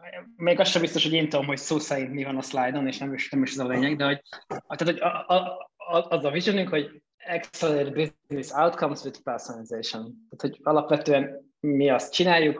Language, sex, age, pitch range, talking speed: Hungarian, male, 20-39, 140-175 Hz, 200 wpm